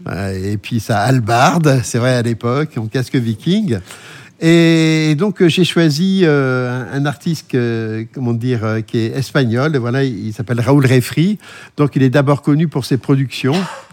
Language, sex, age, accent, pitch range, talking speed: French, male, 60-79, French, 120-155 Hz, 155 wpm